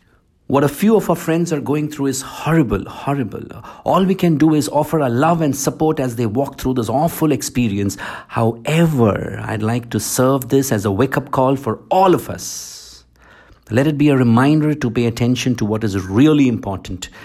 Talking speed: 195 wpm